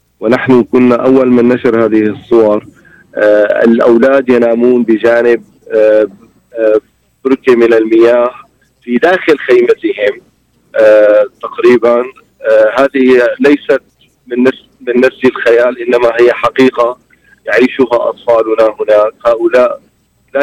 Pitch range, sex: 115-135 Hz, male